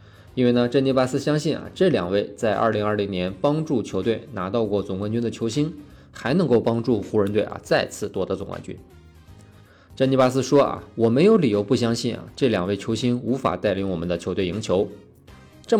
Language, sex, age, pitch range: Chinese, male, 20-39, 95-130 Hz